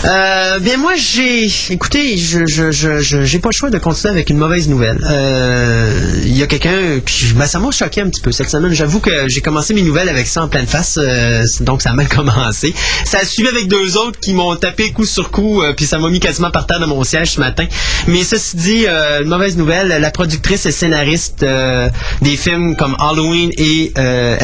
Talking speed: 230 wpm